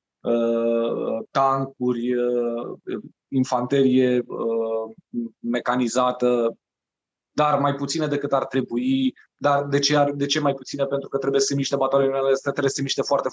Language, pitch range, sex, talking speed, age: Romanian, 130-155 Hz, male, 145 wpm, 20-39